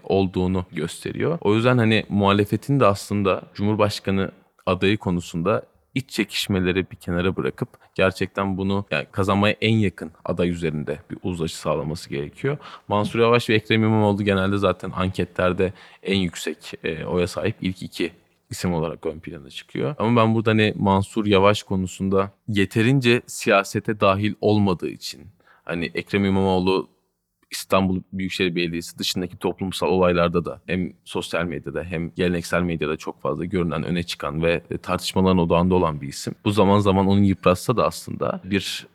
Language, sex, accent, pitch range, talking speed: Turkish, male, native, 90-100 Hz, 145 wpm